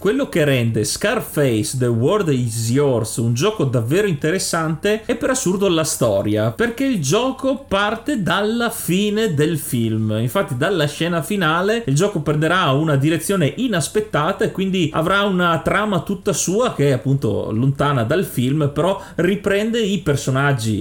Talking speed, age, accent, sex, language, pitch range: 150 wpm, 30-49, native, male, Italian, 135-200 Hz